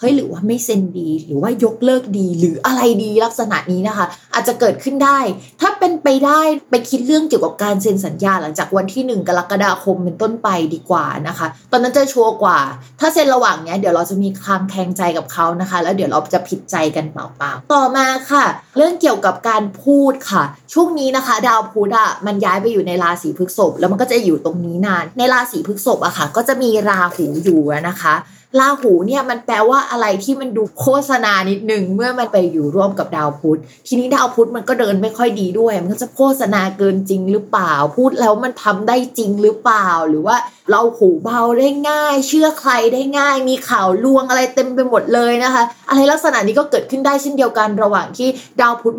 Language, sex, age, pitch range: Thai, female, 20-39, 185-260 Hz